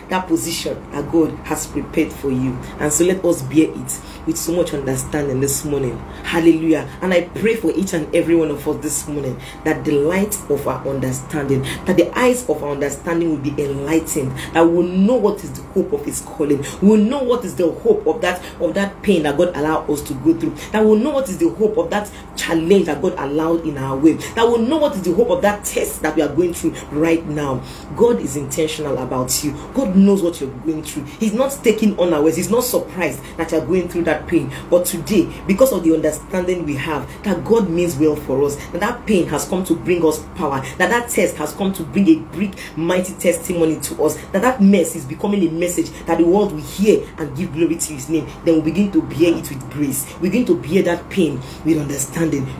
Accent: Nigerian